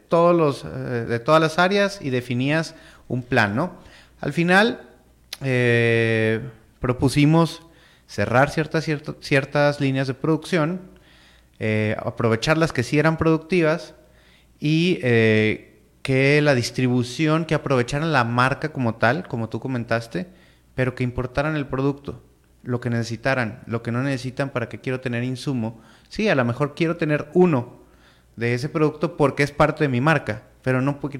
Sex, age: male, 30-49